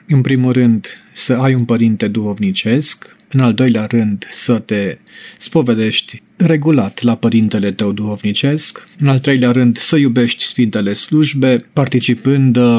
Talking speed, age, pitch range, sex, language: 135 wpm, 40-59, 115-140 Hz, male, English